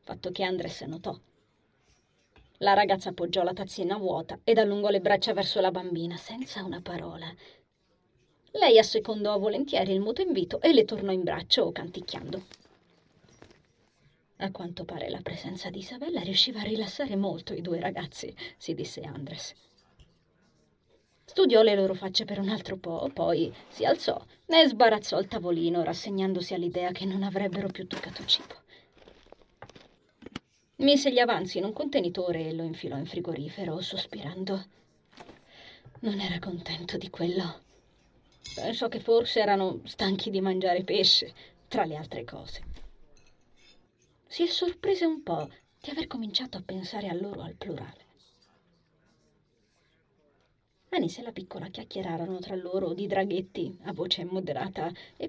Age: 30-49